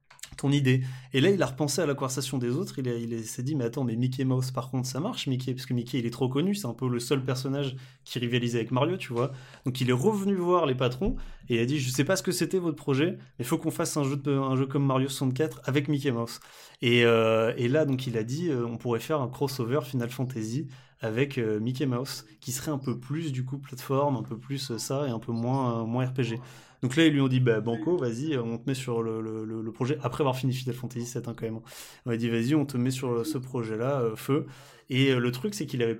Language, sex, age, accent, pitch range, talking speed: French, male, 20-39, French, 120-145 Hz, 275 wpm